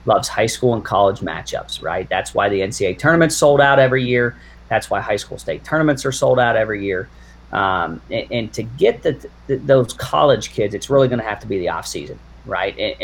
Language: English